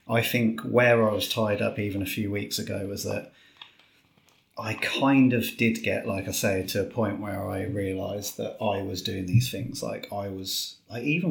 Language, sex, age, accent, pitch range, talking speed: English, male, 30-49, British, 95-115 Hz, 200 wpm